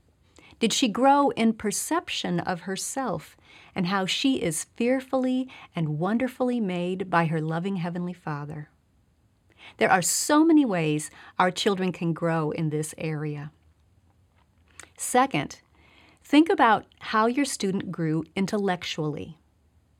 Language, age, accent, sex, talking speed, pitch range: English, 40-59, American, female, 120 wpm, 155-220 Hz